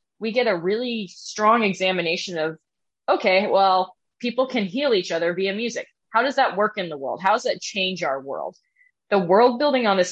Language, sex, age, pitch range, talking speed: English, female, 20-39, 170-205 Hz, 200 wpm